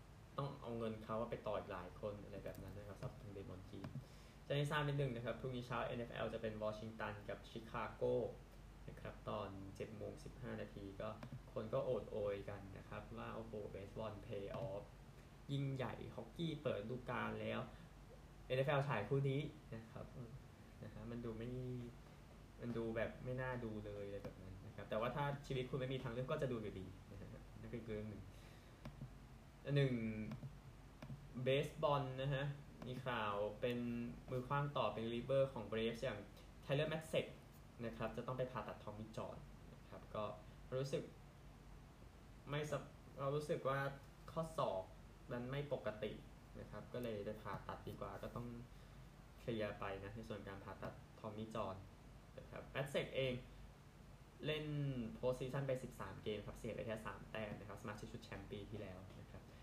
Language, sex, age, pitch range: Thai, male, 20-39, 105-130 Hz